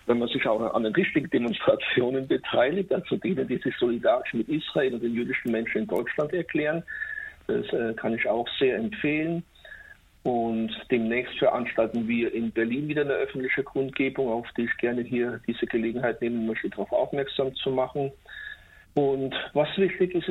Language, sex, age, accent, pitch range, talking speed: German, male, 50-69, German, 120-160 Hz, 165 wpm